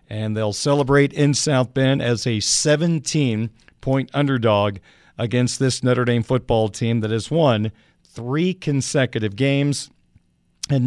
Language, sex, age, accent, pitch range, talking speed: English, male, 50-69, American, 120-150 Hz, 130 wpm